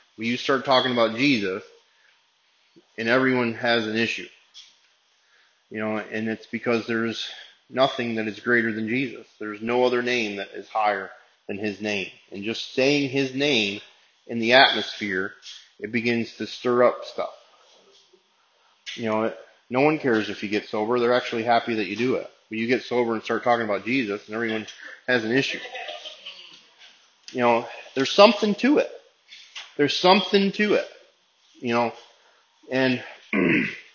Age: 30-49